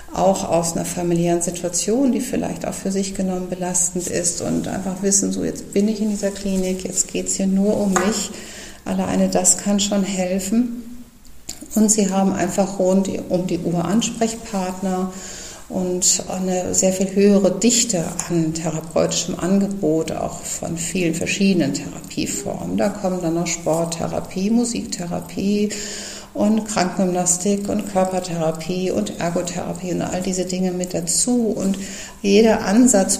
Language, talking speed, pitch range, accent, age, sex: German, 140 wpm, 175-200 Hz, German, 50-69, female